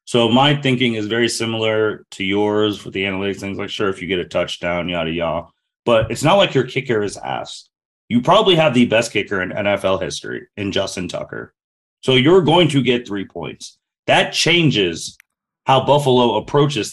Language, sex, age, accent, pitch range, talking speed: English, male, 30-49, American, 105-135 Hz, 190 wpm